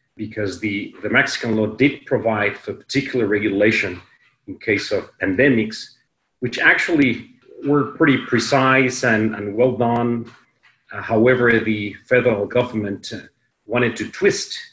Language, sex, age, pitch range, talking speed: English, male, 40-59, 105-125 Hz, 125 wpm